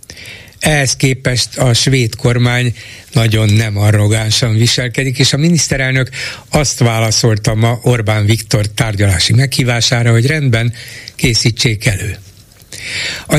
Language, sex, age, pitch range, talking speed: Hungarian, male, 60-79, 110-135 Hz, 110 wpm